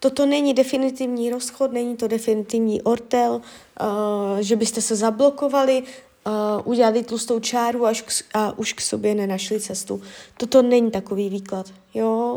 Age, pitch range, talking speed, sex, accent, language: 20-39, 220-260 Hz, 120 wpm, female, native, Czech